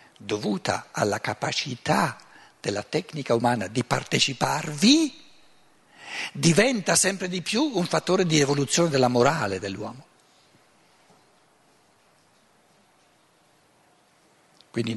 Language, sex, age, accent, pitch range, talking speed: Italian, male, 60-79, native, 115-160 Hz, 80 wpm